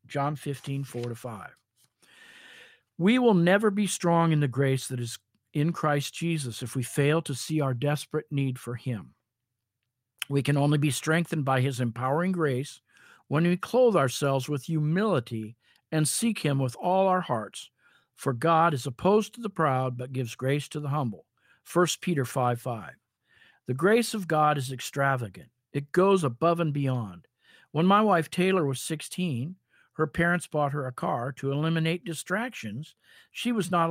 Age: 50-69